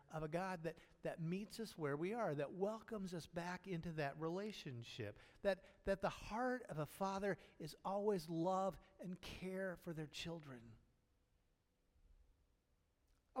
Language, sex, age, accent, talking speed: English, male, 50-69, American, 150 wpm